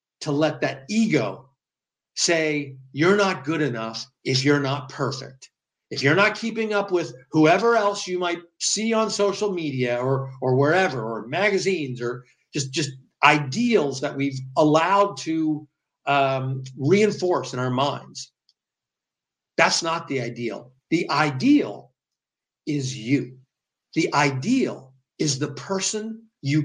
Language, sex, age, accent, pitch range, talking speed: English, male, 50-69, American, 135-185 Hz, 135 wpm